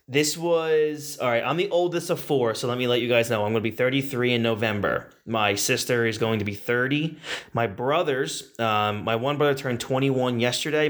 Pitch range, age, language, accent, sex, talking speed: 115-145 Hz, 20-39, English, American, male, 225 wpm